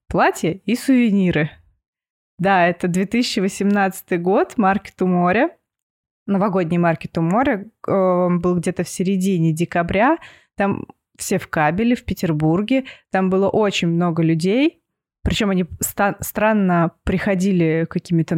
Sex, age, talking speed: female, 20-39, 115 wpm